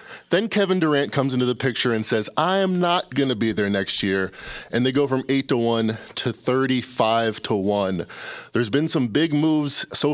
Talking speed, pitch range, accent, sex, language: 205 wpm, 110-140 Hz, American, male, English